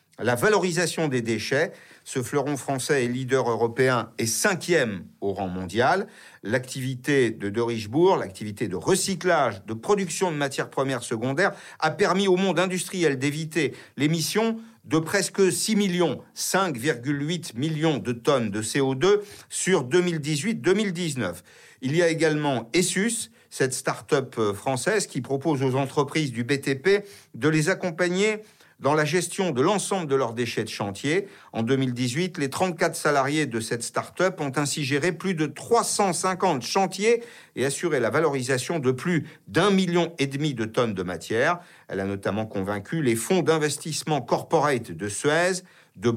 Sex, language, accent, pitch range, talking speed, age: male, French, French, 125-180 Hz, 150 wpm, 50-69